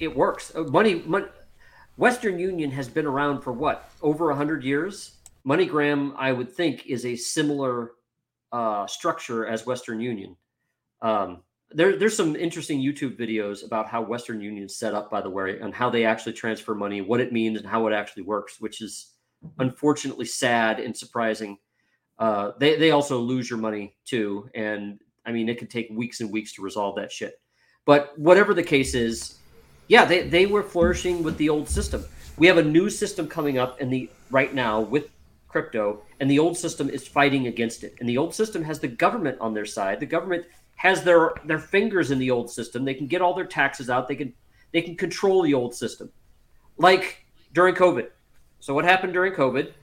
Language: English